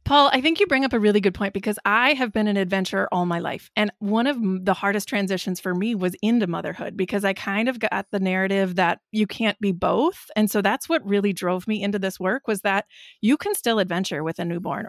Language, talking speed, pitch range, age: English, 245 wpm, 190-235 Hz, 20-39